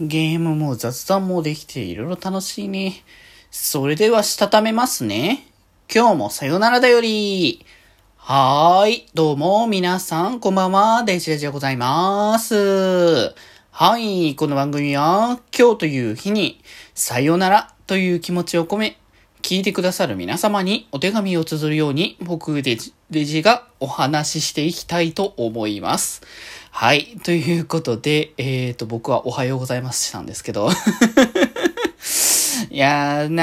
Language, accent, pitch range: Japanese, native, 130-190 Hz